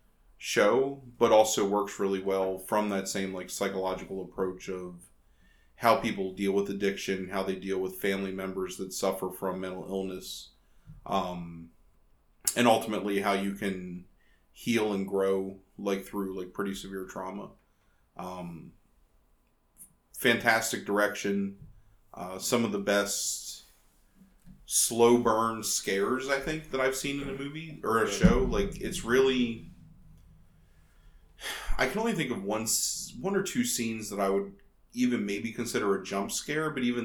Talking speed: 145 wpm